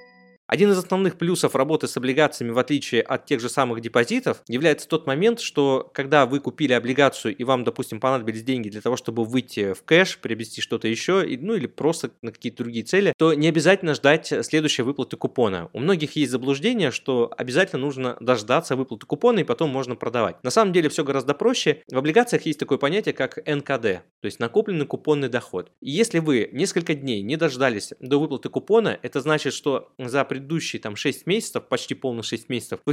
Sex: male